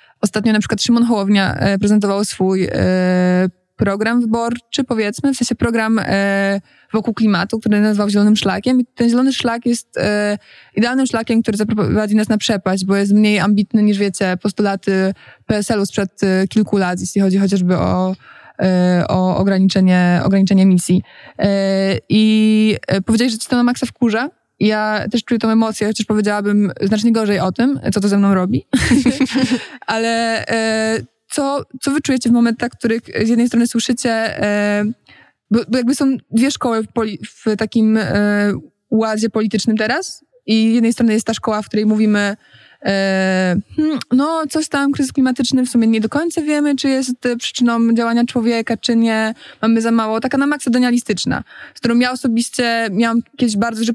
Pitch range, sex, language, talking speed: 200-235 Hz, female, Polish, 160 wpm